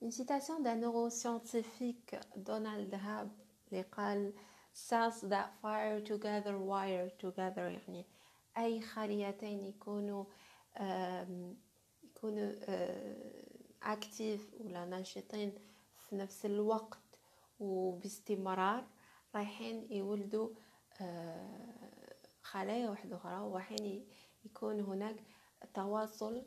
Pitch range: 190-220 Hz